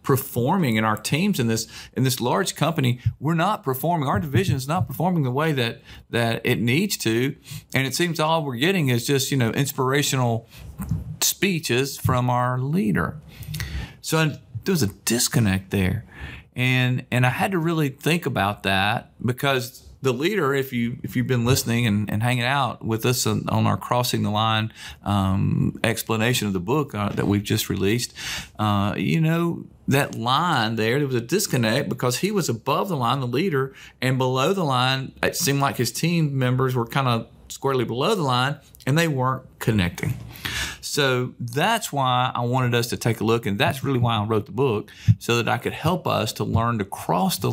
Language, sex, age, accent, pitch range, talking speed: English, male, 40-59, American, 115-140 Hz, 195 wpm